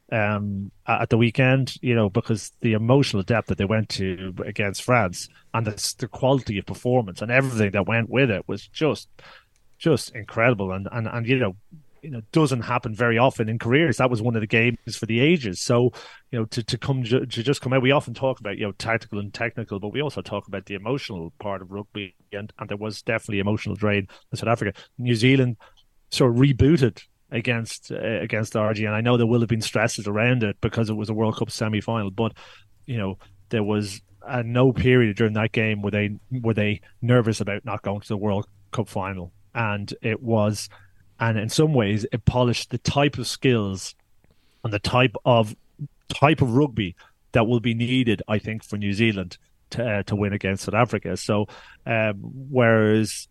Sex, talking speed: male, 205 wpm